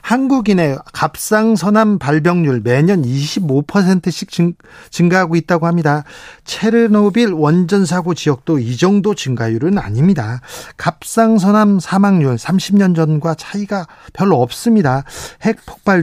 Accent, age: native, 40-59